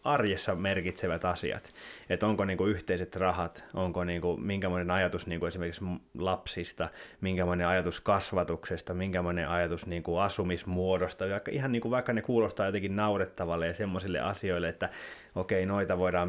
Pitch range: 85-105 Hz